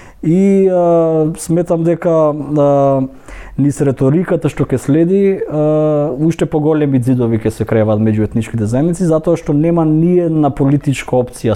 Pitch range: 125-165 Hz